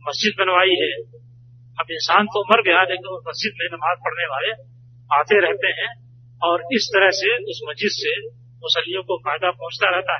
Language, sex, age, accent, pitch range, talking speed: Hindi, male, 40-59, native, 120-200 Hz, 170 wpm